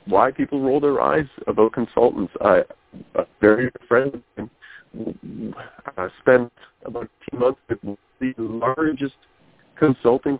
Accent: American